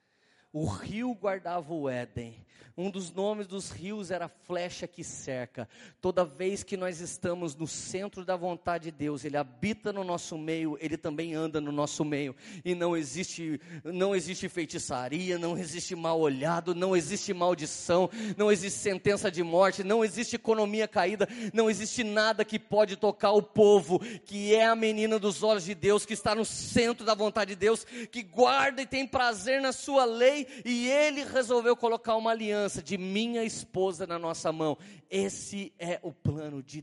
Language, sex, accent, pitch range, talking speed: Portuguese, male, Brazilian, 150-210 Hz, 175 wpm